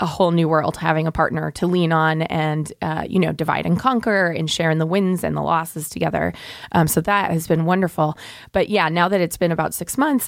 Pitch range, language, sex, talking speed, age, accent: 160-190 Hz, English, female, 240 wpm, 20-39, American